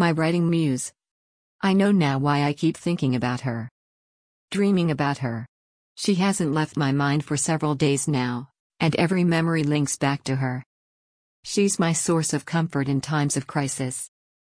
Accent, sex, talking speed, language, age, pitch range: American, female, 165 wpm, English, 50-69, 140-170 Hz